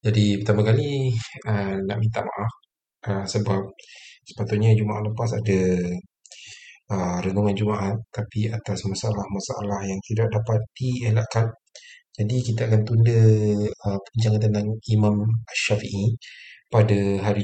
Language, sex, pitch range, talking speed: Malay, male, 100-115 Hz, 115 wpm